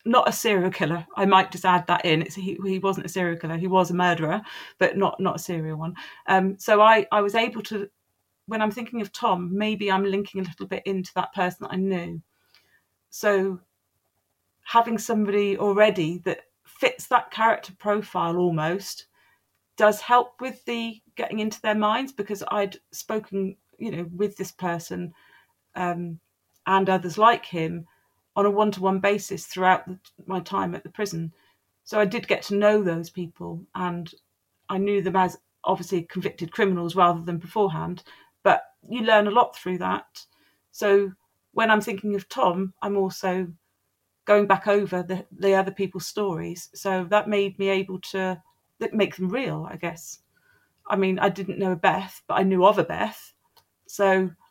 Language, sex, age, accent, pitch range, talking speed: English, female, 40-59, British, 180-205 Hz, 175 wpm